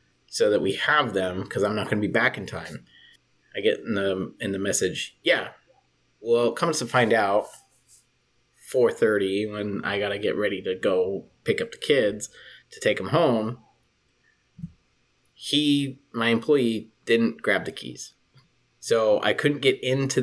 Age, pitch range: 30-49, 105-145 Hz